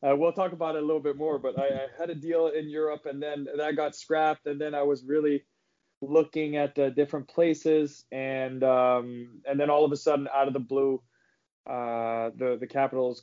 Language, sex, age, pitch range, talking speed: English, male, 20-39, 130-150 Hz, 220 wpm